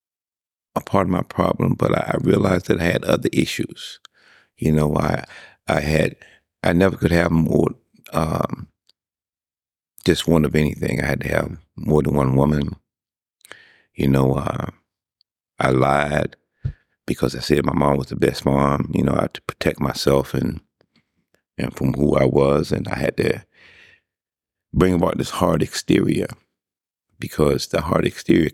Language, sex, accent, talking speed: English, male, American, 160 wpm